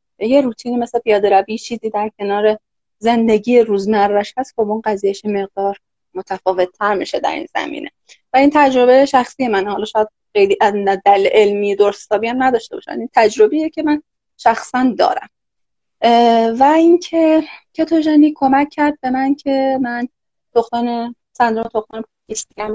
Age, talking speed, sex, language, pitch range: 20-39, 135 wpm, female, Persian, 210-265 Hz